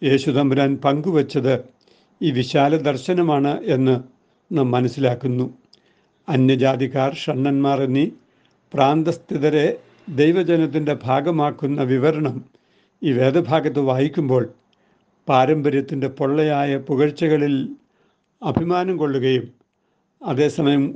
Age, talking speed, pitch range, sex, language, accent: 60-79, 70 wpm, 135-165 Hz, male, Malayalam, native